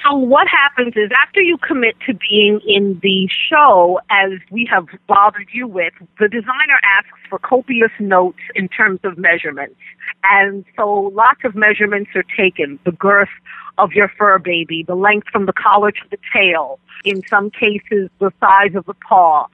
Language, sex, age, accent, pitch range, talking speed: English, female, 50-69, American, 190-235 Hz, 175 wpm